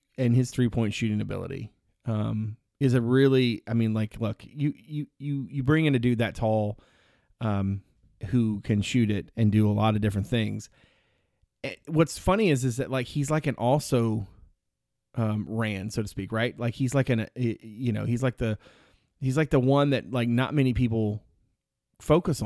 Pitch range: 110-135 Hz